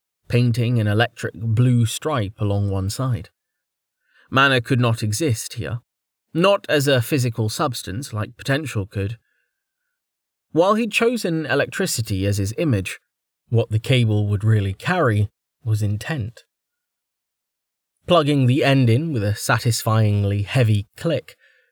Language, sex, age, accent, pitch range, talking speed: English, male, 30-49, British, 105-150 Hz, 125 wpm